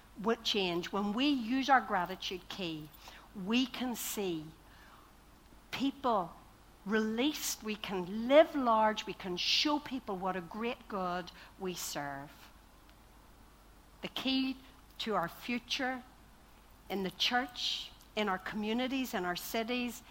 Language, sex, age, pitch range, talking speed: English, female, 60-79, 180-245 Hz, 120 wpm